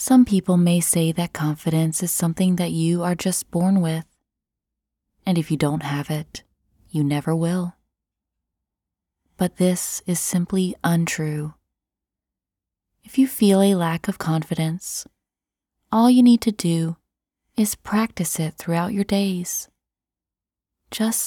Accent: American